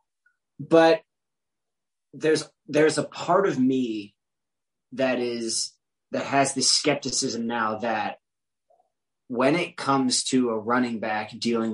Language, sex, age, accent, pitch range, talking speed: English, male, 30-49, American, 115-150 Hz, 120 wpm